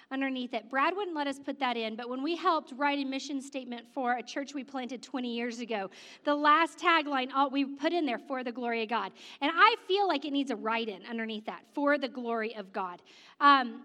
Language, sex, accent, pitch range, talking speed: English, female, American, 245-325 Hz, 235 wpm